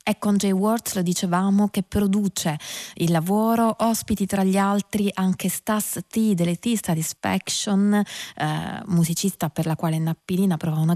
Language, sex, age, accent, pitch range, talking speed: Italian, female, 20-39, native, 170-220 Hz, 155 wpm